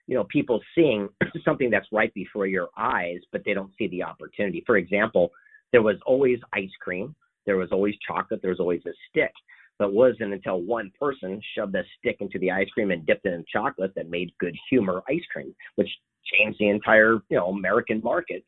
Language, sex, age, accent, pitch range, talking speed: English, male, 40-59, American, 95-140 Hz, 210 wpm